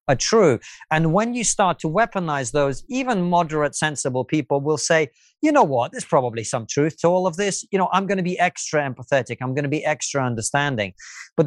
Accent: British